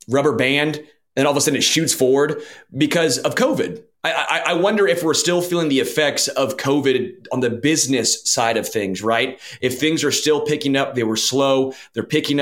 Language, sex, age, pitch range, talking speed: English, male, 30-49, 110-135 Hz, 210 wpm